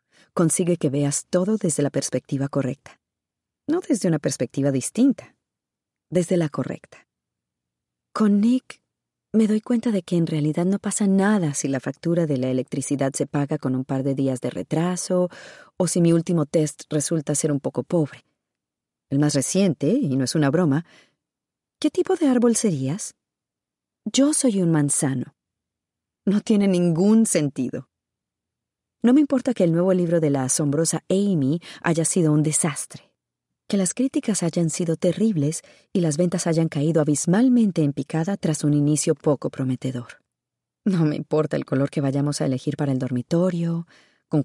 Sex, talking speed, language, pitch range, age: female, 165 wpm, Spanish, 140-190 Hz, 40-59